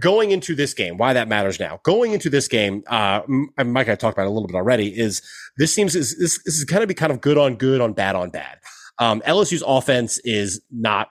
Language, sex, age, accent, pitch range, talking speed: English, male, 30-49, American, 105-130 Hz, 260 wpm